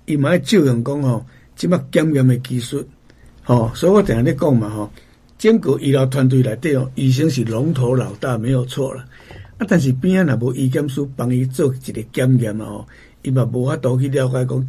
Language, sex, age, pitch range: Chinese, male, 60-79, 125-150 Hz